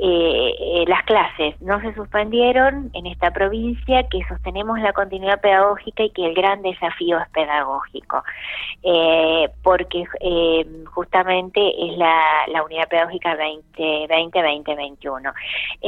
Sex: female